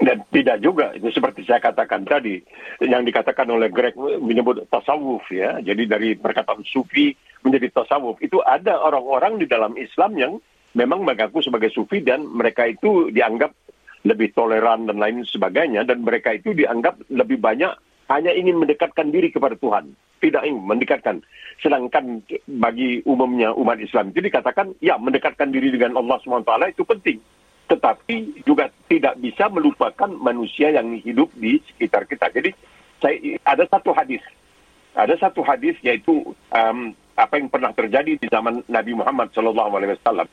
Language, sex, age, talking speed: Indonesian, male, 50-69, 150 wpm